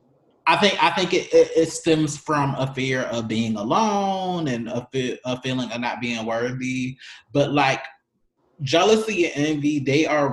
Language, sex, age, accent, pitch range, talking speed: English, male, 20-39, American, 120-145 Hz, 170 wpm